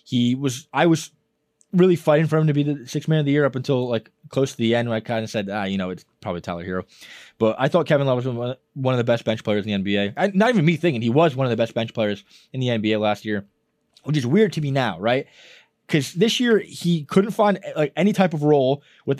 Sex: male